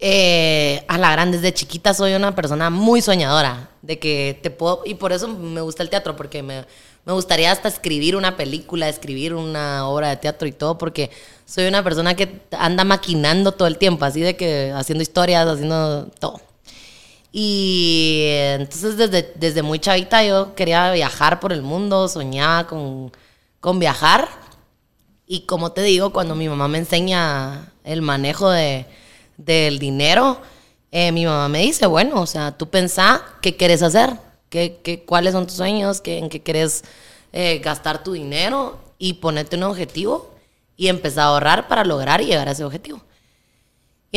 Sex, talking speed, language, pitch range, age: female, 175 wpm, Spanish, 150-190 Hz, 20-39